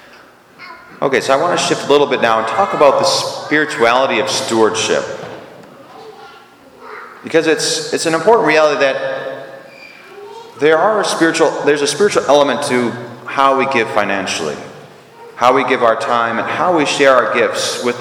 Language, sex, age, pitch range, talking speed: English, male, 30-49, 125-170 Hz, 160 wpm